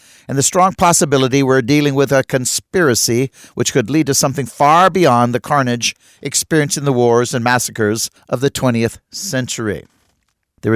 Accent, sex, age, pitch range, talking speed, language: American, male, 60-79, 130-170 Hz, 160 wpm, English